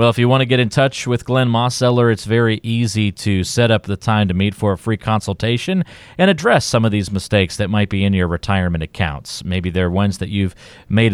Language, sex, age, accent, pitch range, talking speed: English, male, 40-59, American, 95-120 Hz, 235 wpm